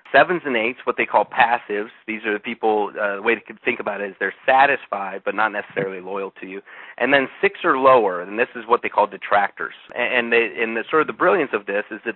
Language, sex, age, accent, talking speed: English, male, 30-49, American, 250 wpm